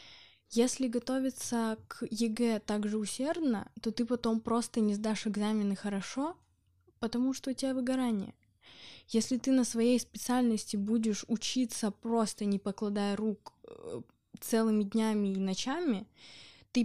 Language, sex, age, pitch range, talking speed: Russian, female, 20-39, 200-230 Hz, 125 wpm